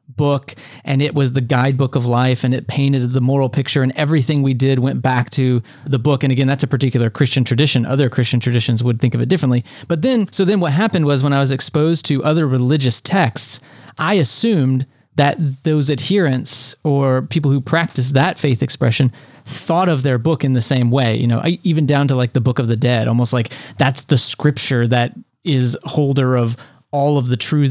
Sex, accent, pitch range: male, American, 125-150 Hz